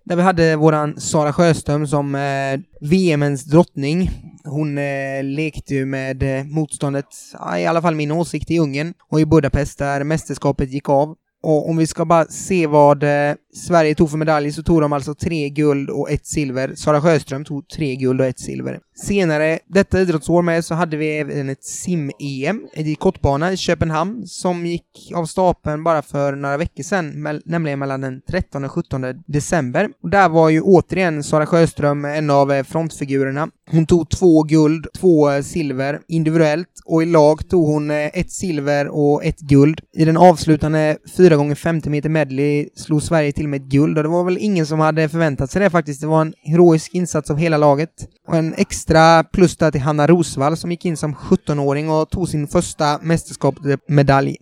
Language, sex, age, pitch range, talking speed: Swedish, male, 20-39, 145-170 Hz, 180 wpm